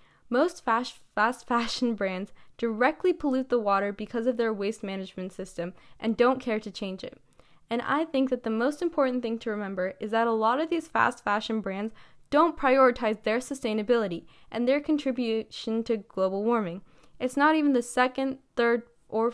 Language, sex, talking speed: English, female, 175 wpm